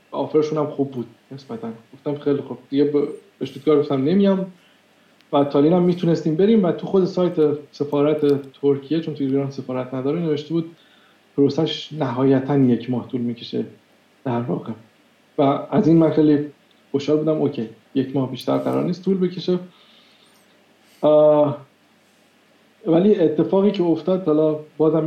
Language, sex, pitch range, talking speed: Persian, male, 140-160 Hz, 145 wpm